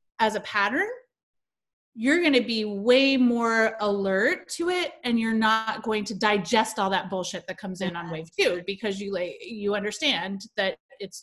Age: 30-49